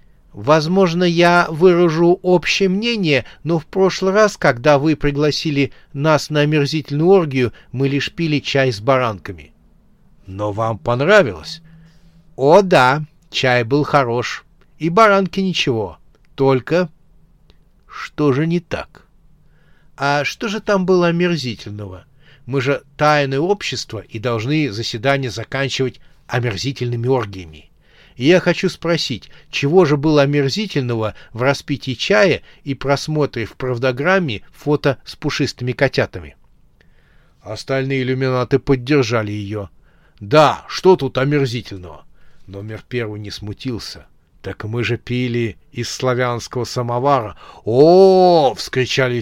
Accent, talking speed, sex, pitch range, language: native, 115 wpm, male, 120-155 Hz, Russian